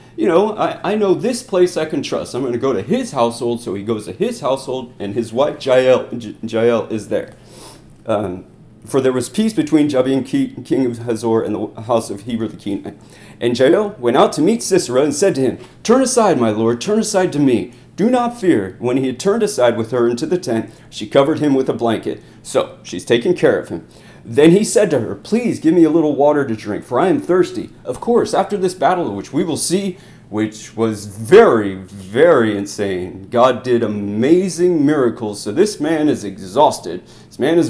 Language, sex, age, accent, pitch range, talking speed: English, male, 30-49, American, 115-185 Hz, 215 wpm